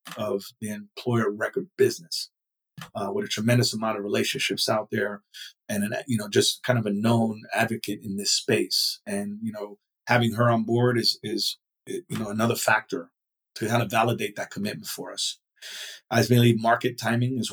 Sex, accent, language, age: male, American, English, 30-49